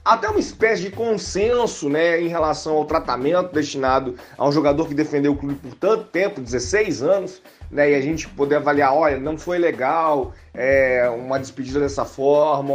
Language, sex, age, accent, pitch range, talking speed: Portuguese, male, 30-49, Brazilian, 140-200 Hz, 180 wpm